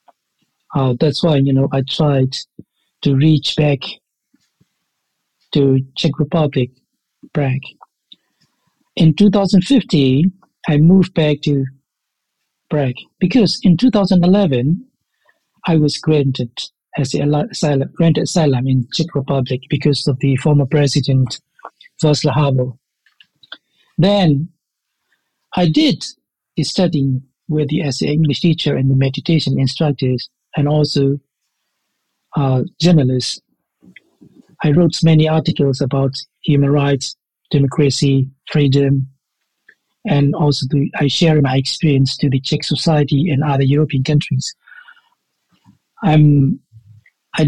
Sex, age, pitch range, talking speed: male, 60-79, 135-160 Hz, 120 wpm